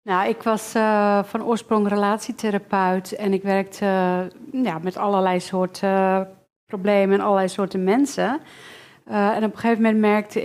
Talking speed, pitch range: 150 wpm, 185-205 Hz